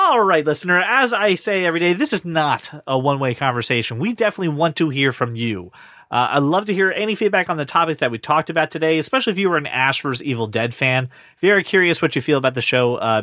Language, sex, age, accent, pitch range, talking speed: English, male, 30-49, American, 130-180 Hz, 250 wpm